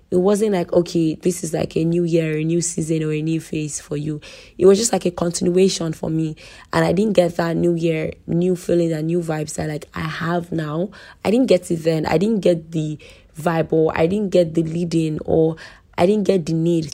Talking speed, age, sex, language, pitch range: 235 wpm, 20-39, female, English, 160-180 Hz